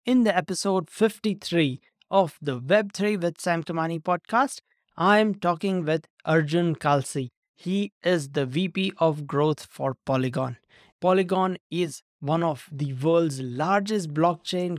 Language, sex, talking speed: English, male, 130 wpm